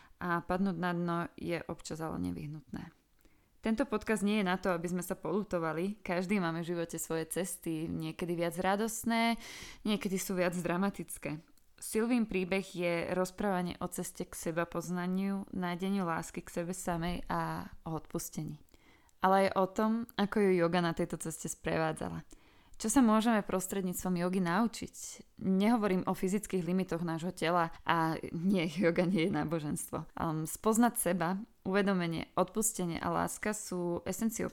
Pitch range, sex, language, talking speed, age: 170-200 Hz, female, Slovak, 150 wpm, 20-39